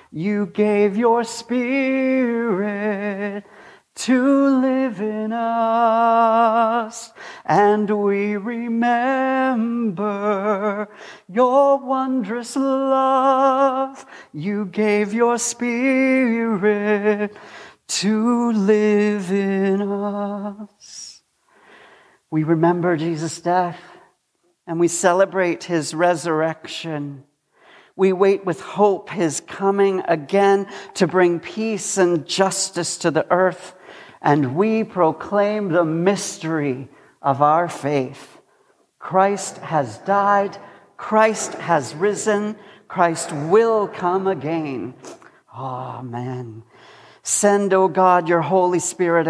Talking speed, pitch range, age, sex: 85 wpm, 170-215 Hz, 40-59, male